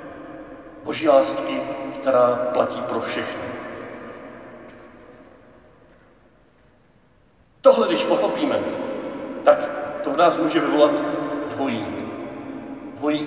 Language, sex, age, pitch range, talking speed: Czech, male, 50-69, 200-300 Hz, 75 wpm